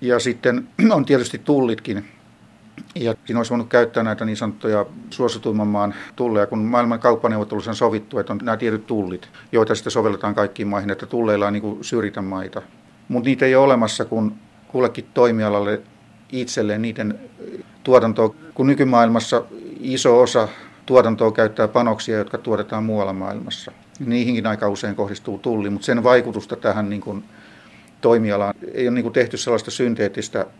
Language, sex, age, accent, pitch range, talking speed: Finnish, male, 50-69, native, 105-120 Hz, 155 wpm